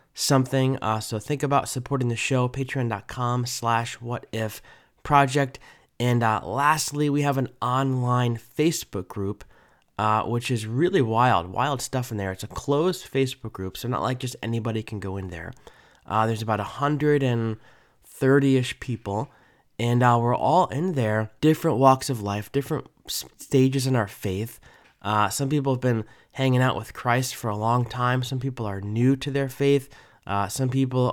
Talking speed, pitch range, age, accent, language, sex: 170 wpm, 110-135 Hz, 20-39, American, English, male